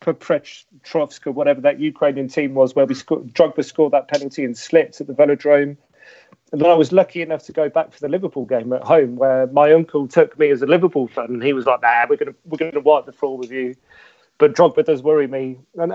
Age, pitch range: 30-49, 140-175 Hz